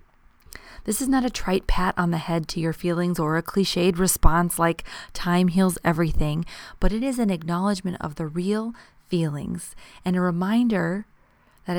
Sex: female